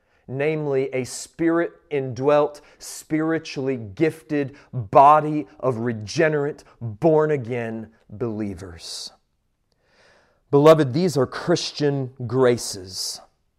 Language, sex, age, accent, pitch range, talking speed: English, male, 30-49, American, 115-150 Hz, 65 wpm